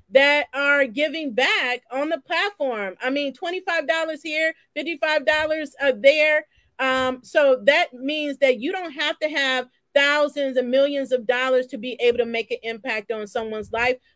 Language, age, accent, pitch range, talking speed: English, 30-49, American, 235-280 Hz, 160 wpm